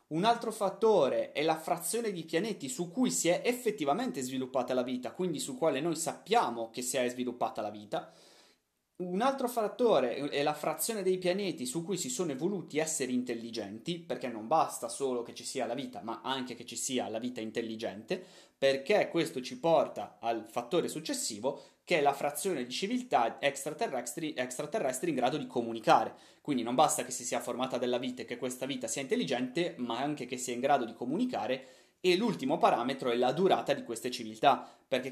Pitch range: 125-180 Hz